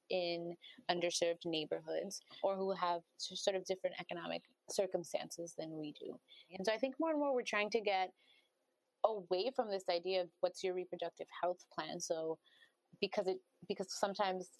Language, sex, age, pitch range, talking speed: English, female, 30-49, 175-210 Hz, 165 wpm